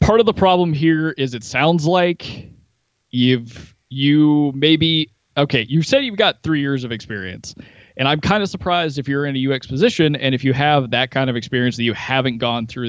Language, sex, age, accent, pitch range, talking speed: English, male, 20-39, American, 120-155 Hz, 210 wpm